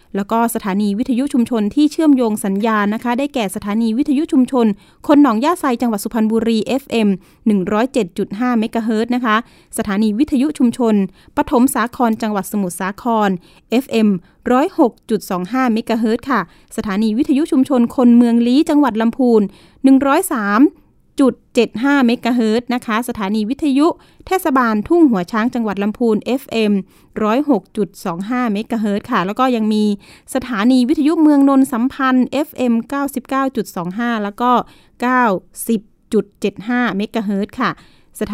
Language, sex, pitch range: Thai, female, 210-260 Hz